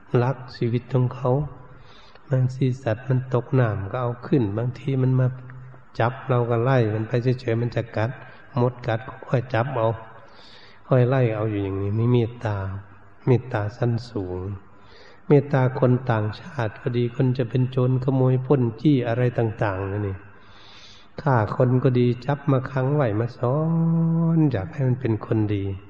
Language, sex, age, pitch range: Thai, male, 60-79, 110-135 Hz